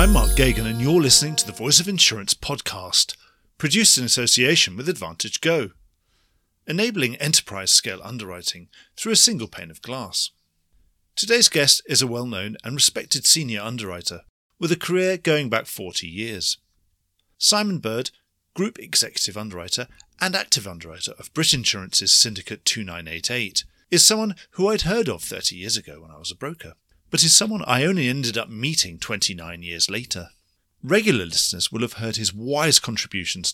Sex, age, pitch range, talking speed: male, 40-59, 90-155 Hz, 165 wpm